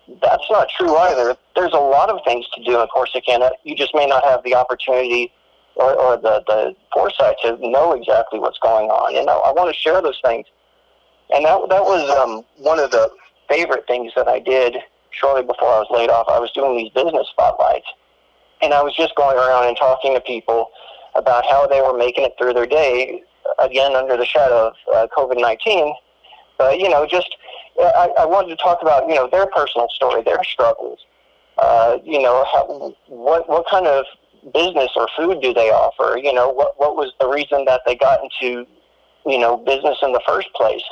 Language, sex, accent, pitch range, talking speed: English, male, American, 120-145 Hz, 205 wpm